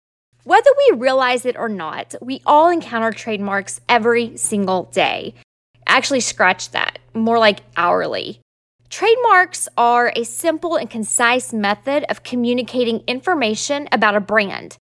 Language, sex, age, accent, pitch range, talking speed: English, female, 20-39, American, 225-290 Hz, 130 wpm